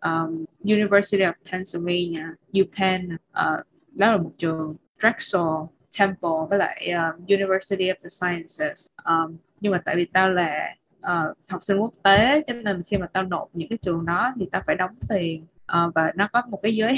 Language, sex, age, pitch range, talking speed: Vietnamese, female, 20-39, 175-205 Hz, 185 wpm